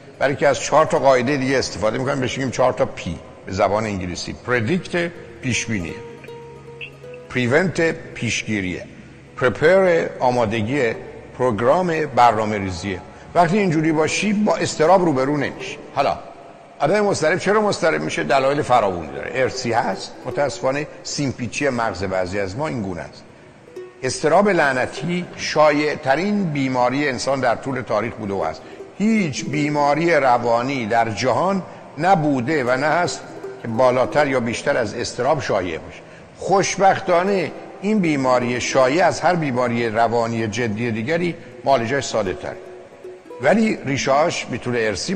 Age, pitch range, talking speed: 60-79, 110-150 Hz, 130 wpm